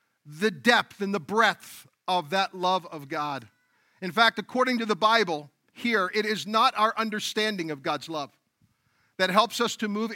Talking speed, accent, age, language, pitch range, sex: 175 wpm, American, 50-69, English, 175-230 Hz, male